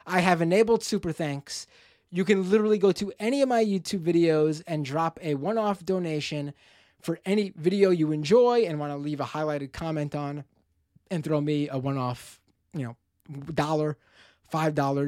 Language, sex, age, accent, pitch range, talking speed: English, male, 20-39, American, 130-195 Hz, 165 wpm